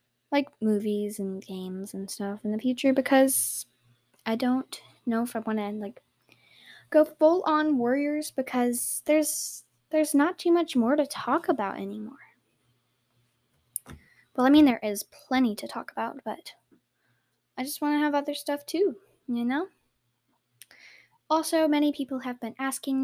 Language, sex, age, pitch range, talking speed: English, female, 10-29, 225-285 Hz, 150 wpm